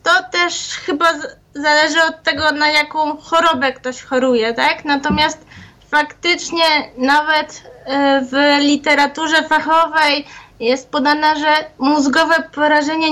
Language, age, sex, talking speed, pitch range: Polish, 20-39, female, 105 wpm, 280-315 Hz